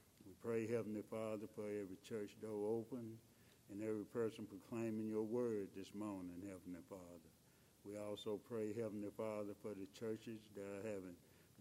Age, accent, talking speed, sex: 60-79, American, 150 wpm, male